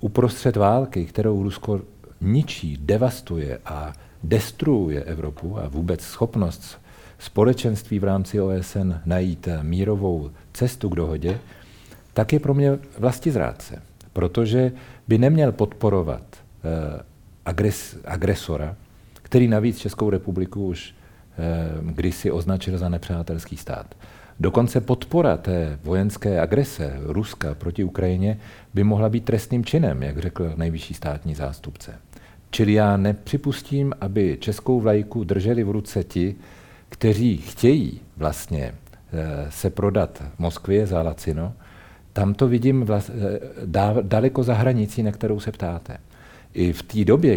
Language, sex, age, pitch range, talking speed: Czech, male, 50-69, 85-110 Hz, 120 wpm